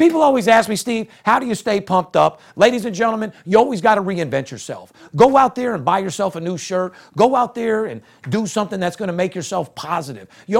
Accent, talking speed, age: American, 240 wpm, 40-59